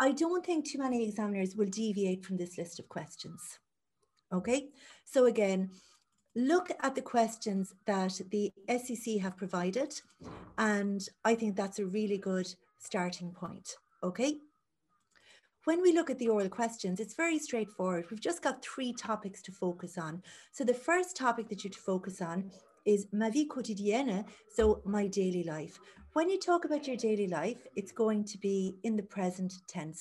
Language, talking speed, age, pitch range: English, 170 wpm, 40-59, 190-255 Hz